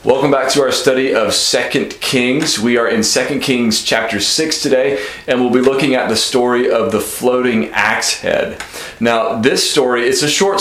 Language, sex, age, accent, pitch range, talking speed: English, male, 40-59, American, 110-140 Hz, 190 wpm